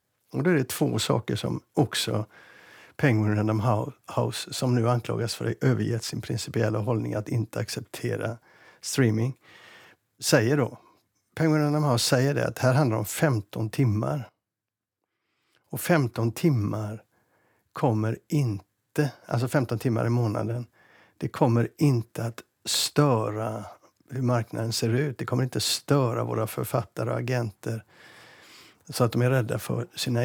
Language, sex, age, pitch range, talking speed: Swedish, male, 60-79, 110-135 Hz, 140 wpm